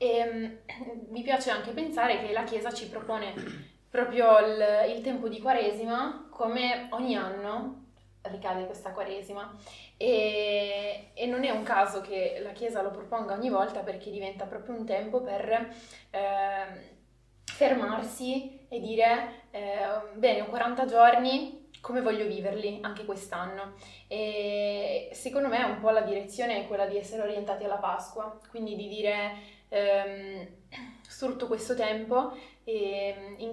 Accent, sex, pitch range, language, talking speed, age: native, female, 200-235 Hz, Italian, 140 wpm, 20-39